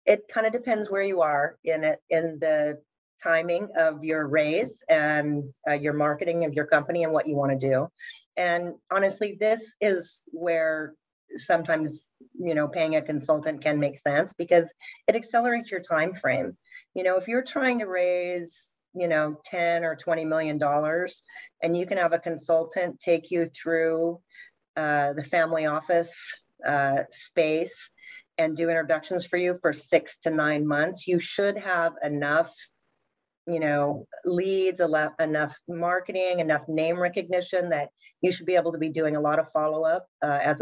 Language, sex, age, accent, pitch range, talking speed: English, female, 40-59, American, 155-185 Hz, 170 wpm